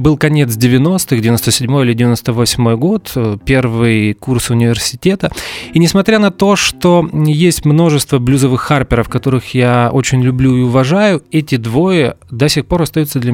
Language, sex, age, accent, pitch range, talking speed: Russian, male, 20-39, native, 125-165 Hz, 145 wpm